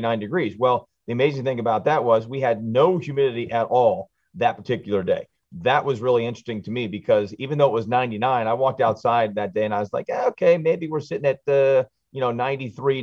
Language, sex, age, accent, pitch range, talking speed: English, male, 40-59, American, 115-140 Hz, 220 wpm